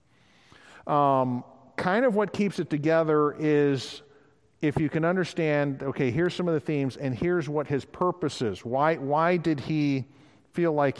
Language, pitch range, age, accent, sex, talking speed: English, 125-155 Hz, 50-69, American, male, 165 wpm